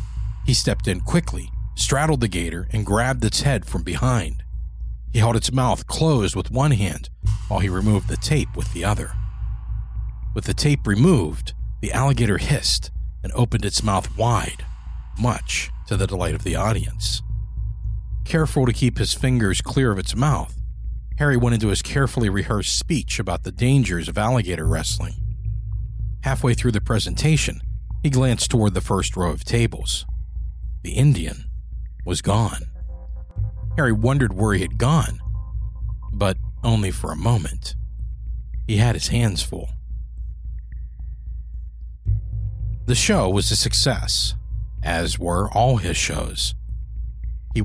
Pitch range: 80-115 Hz